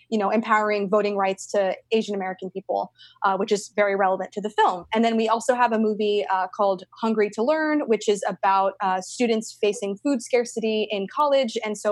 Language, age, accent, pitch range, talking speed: English, 20-39, American, 190-220 Hz, 205 wpm